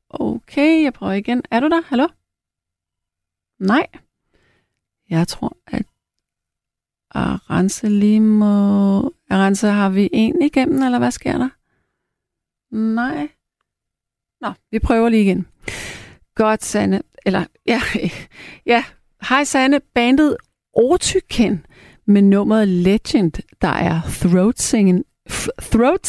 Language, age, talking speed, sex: Danish, 40-59, 110 wpm, female